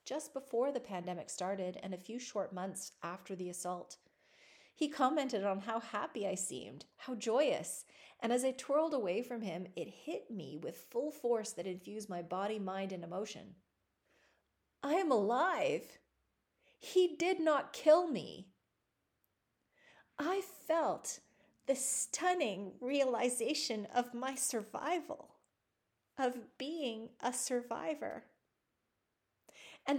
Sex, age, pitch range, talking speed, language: female, 30-49, 185-265 Hz, 125 wpm, English